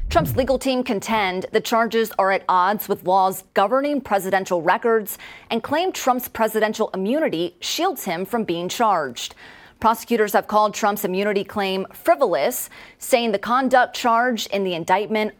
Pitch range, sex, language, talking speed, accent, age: 195-245 Hz, female, English, 150 wpm, American, 30-49